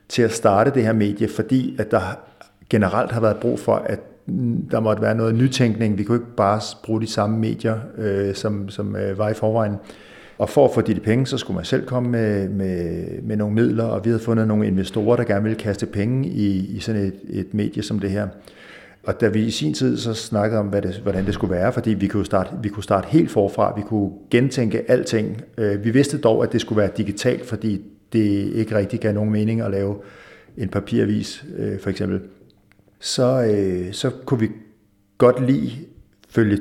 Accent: native